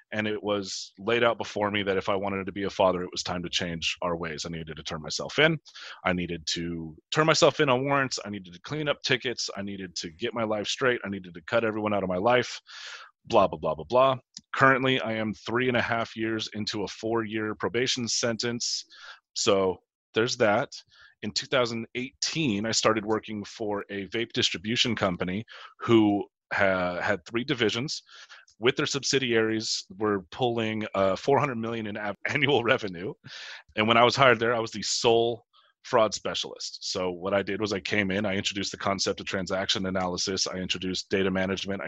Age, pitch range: 30-49, 95-115 Hz